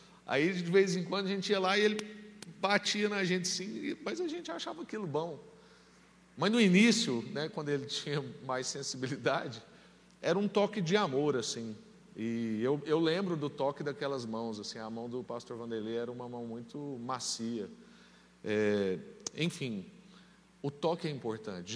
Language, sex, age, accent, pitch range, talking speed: Portuguese, male, 40-59, Brazilian, 115-170 Hz, 170 wpm